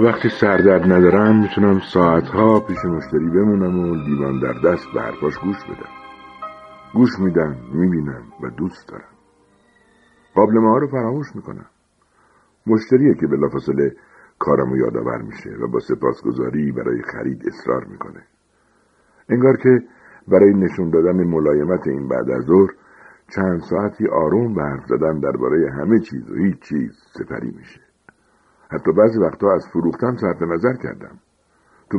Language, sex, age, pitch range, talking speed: Persian, male, 60-79, 80-115 Hz, 135 wpm